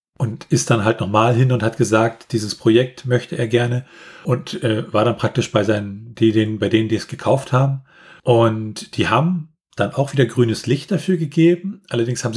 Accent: German